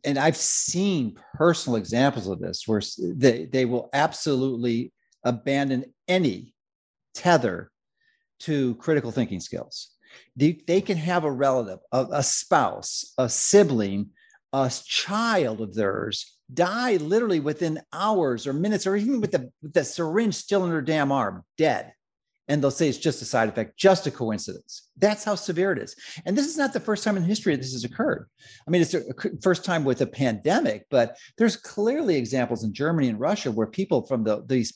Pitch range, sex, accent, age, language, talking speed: 130-200 Hz, male, American, 50-69, English, 180 wpm